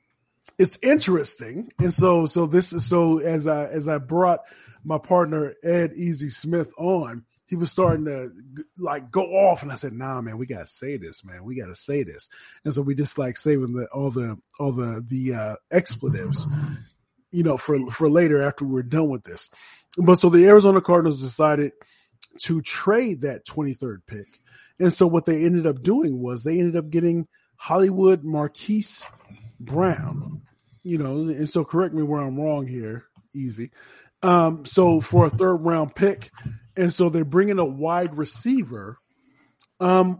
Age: 20-39